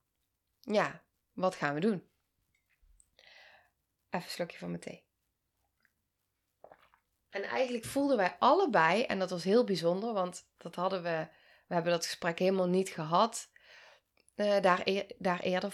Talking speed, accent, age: 140 wpm, Dutch, 20-39